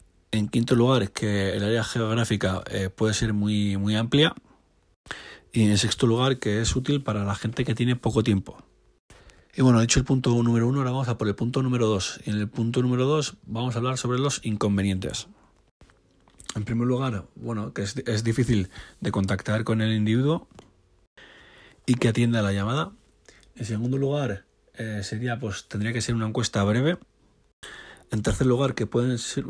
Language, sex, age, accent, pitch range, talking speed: Spanish, male, 30-49, Spanish, 105-125 Hz, 180 wpm